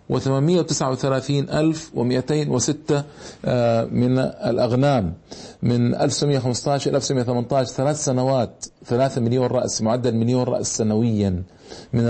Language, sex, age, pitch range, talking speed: Arabic, male, 40-59, 120-145 Hz, 130 wpm